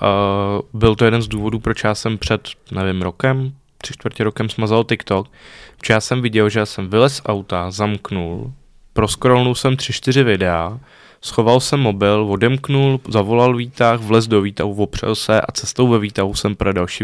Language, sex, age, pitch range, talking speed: Czech, male, 20-39, 100-115 Hz, 175 wpm